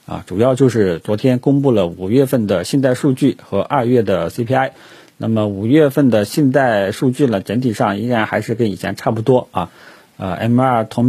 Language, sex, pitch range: Chinese, male, 105-135 Hz